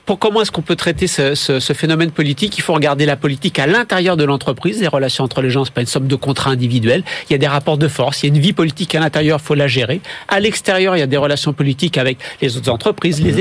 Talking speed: 285 wpm